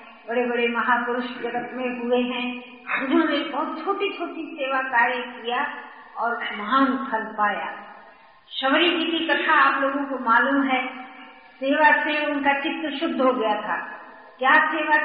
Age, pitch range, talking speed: 50-69, 250-325 Hz, 150 wpm